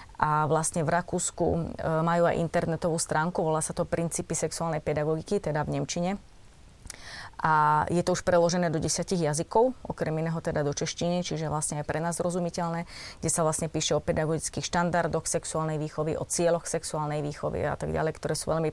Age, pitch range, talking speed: 30-49, 155-170 Hz, 175 wpm